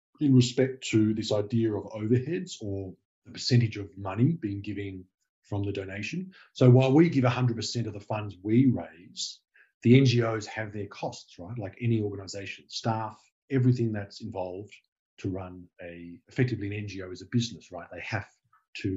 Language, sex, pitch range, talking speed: English, male, 100-125 Hz, 170 wpm